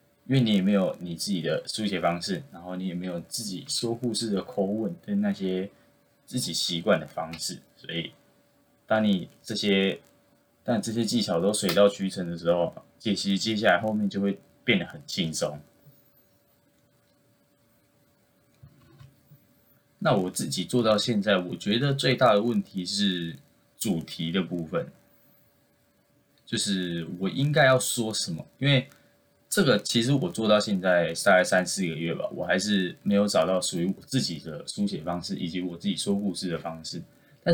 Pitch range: 95-130 Hz